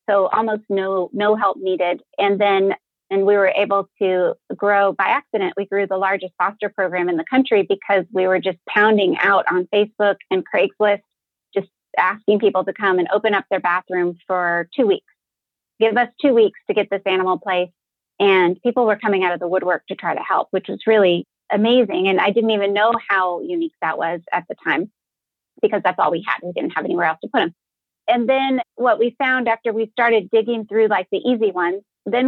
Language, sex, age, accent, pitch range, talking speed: English, female, 30-49, American, 185-220 Hz, 210 wpm